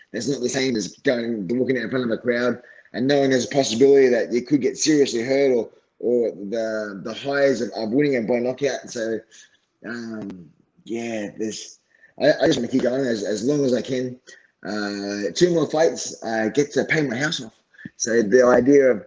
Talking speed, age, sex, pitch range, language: 210 wpm, 20-39, male, 110-135 Hz, English